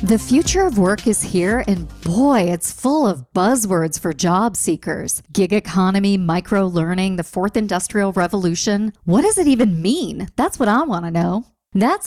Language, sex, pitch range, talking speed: English, female, 180-235 Hz, 175 wpm